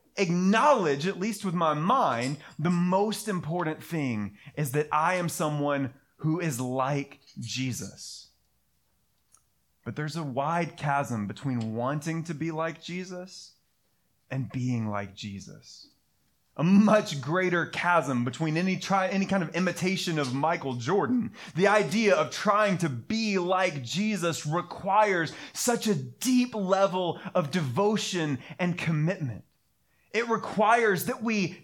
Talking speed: 130 wpm